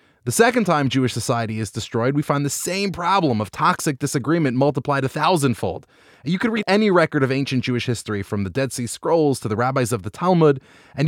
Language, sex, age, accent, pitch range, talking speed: English, male, 30-49, American, 120-165 Hz, 210 wpm